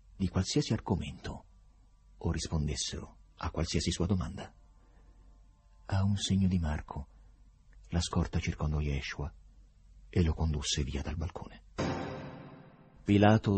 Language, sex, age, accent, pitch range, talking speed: Italian, male, 50-69, native, 80-100 Hz, 110 wpm